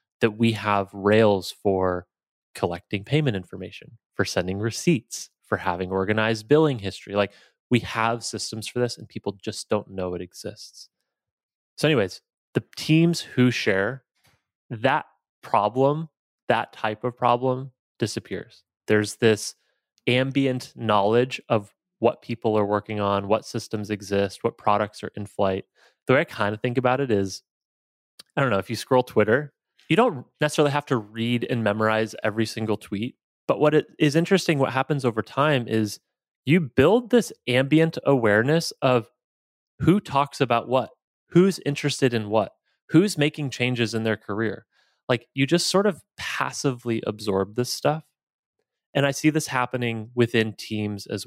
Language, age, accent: English, 20-39, American